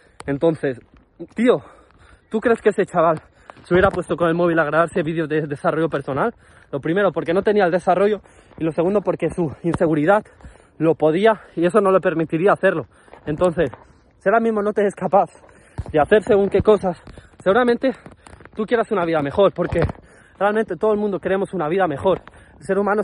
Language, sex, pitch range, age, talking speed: Spanish, male, 165-220 Hz, 20-39, 180 wpm